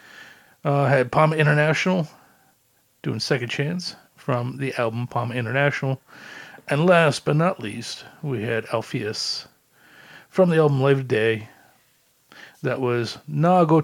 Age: 40-59